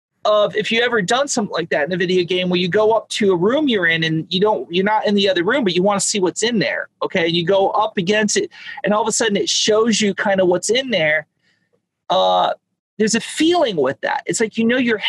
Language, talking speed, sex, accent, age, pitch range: English, 280 wpm, male, American, 40-59, 180-230 Hz